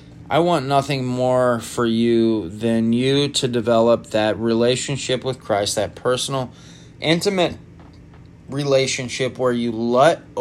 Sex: male